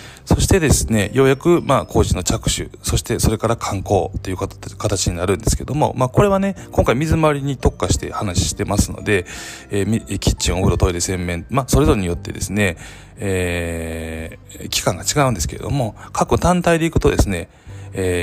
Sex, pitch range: male, 85-110 Hz